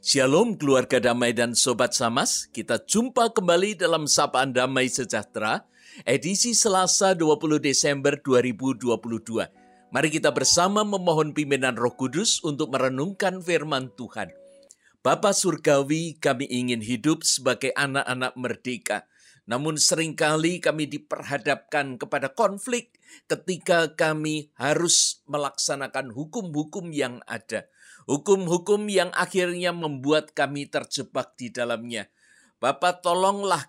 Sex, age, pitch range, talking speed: male, 50-69, 130-175 Hz, 105 wpm